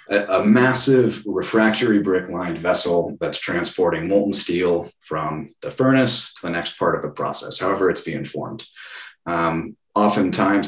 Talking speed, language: 140 wpm, English